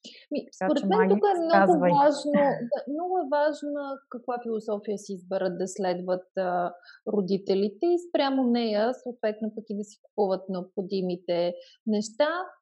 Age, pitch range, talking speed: 30-49, 200-270 Hz, 135 wpm